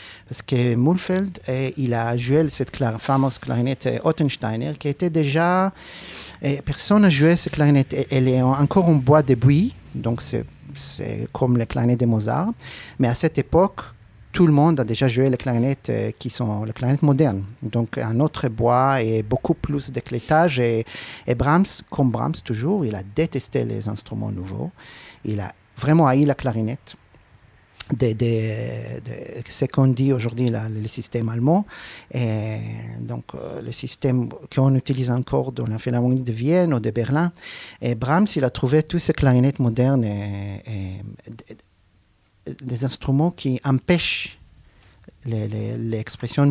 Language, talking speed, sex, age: French, 165 wpm, male, 40-59